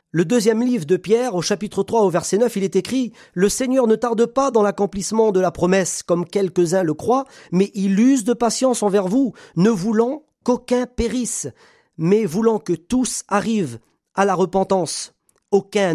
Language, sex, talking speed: French, male, 185 wpm